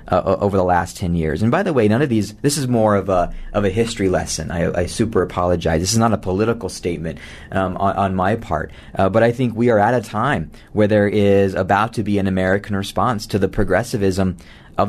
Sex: male